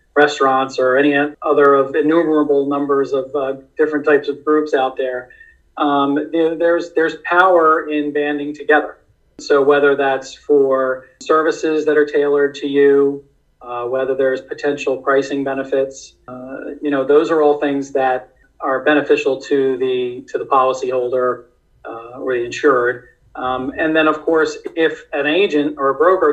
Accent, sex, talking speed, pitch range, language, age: American, male, 155 wpm, 130-150 Hz, English, 40-59